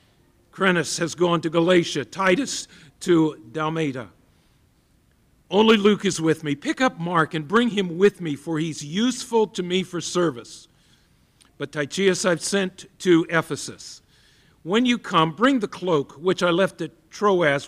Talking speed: 155 wpm